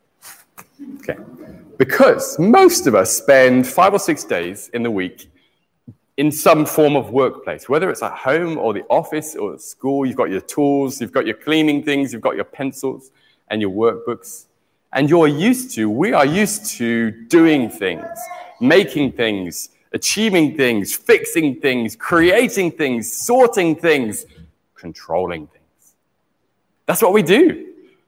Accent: British